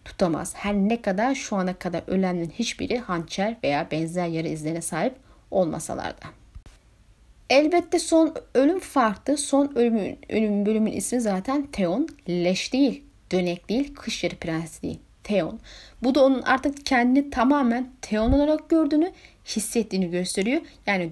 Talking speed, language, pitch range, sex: 135 wpm, Turkish, 190-270 Hz, female